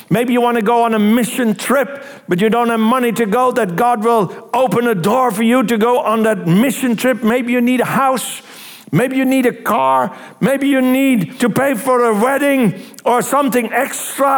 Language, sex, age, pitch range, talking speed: English, male, 60-79, 200-255 Hz, 215 wpm